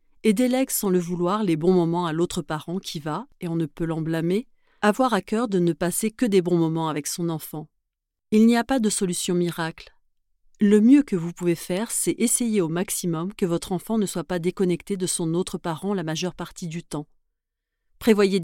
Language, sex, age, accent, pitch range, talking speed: French, female, 40-59, French, 165-210 Hz, 215 wpm